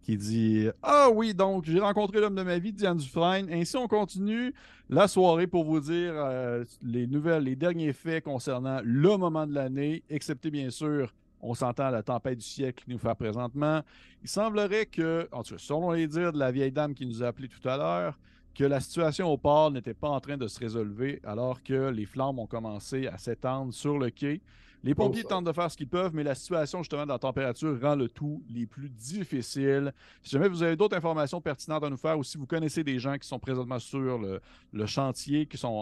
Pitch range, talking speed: 125-165 Hz, 230 wpm